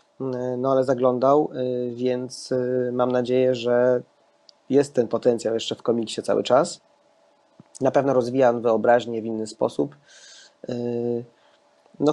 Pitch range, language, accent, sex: 125-145 Hz, Polish, native, male